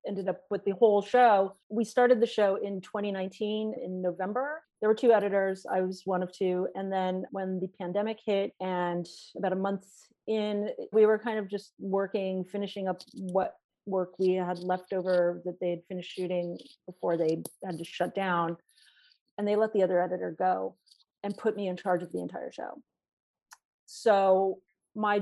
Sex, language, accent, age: female, English, American, 30-49